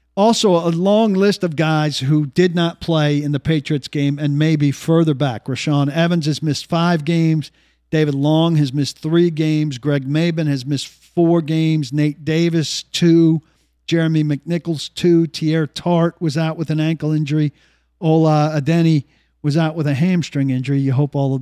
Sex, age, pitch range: male, 50-69, 135-165 Hz